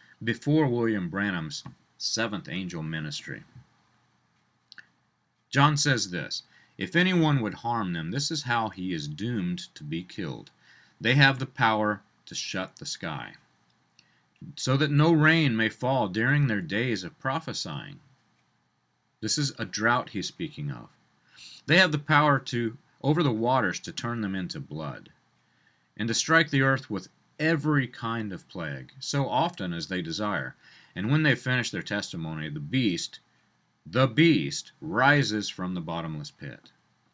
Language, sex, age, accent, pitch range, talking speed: English, male, 40-59, American, 100-150 Hz, 150 wpm